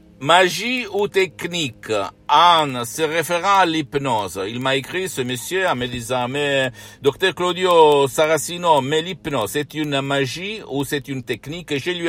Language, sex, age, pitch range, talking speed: Italian, male, 60-79, 125-160 Hz, 170 wpm